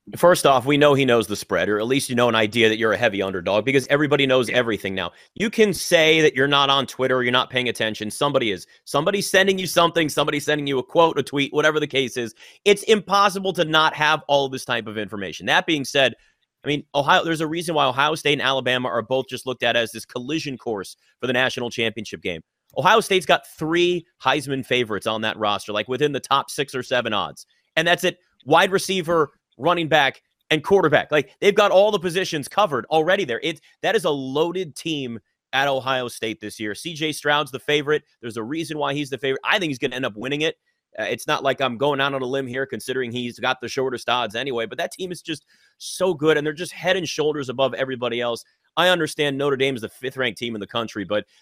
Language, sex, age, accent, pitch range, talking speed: English, male, 30-49, American, 125-155 Hz, 240 wpm